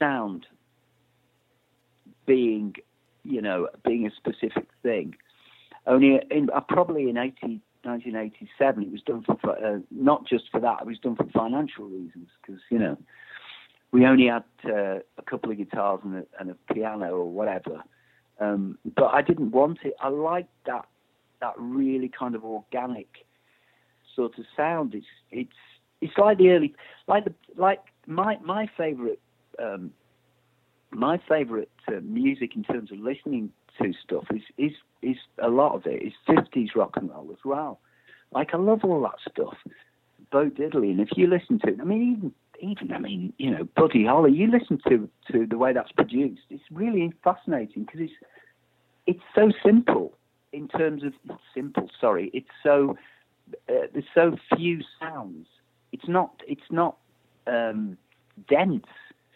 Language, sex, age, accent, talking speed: English, male, 50-69, British, 160 wpm